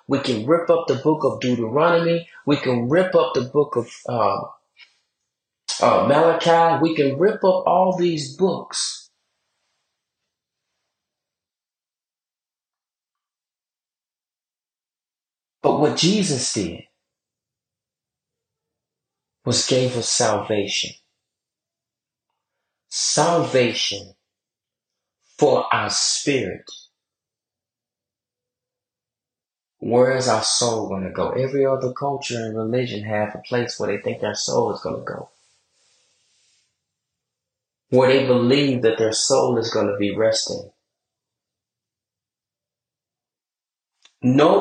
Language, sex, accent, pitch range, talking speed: English, male, American, 110-145 Hz, 100 wpm